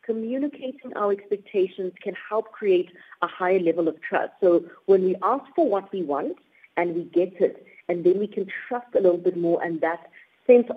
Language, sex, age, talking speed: English, female, 50-69, 195 wpm